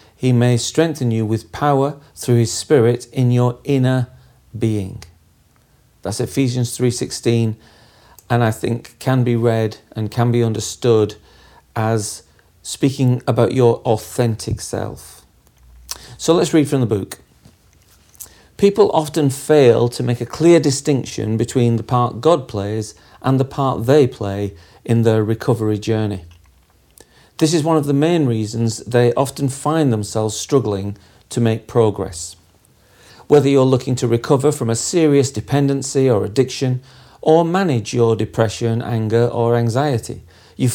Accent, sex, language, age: British, male, English, 40-59